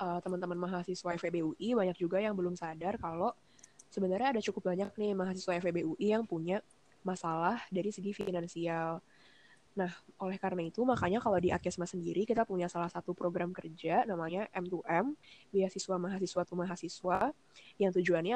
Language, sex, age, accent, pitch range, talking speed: Indonesian, female, 10-29, native, 170-195 Hz, 145 wpm